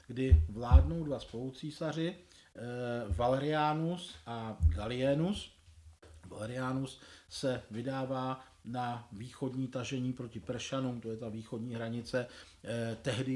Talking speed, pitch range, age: 95 wpm, 120-150 Hz, 50-69